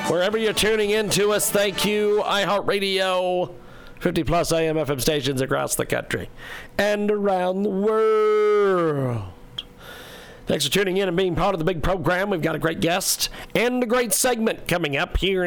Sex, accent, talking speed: male, American, 165 wpm